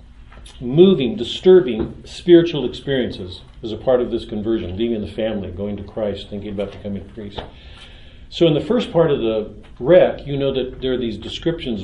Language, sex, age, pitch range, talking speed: English, male, 50-69, 105-140 Hz, 190 wpm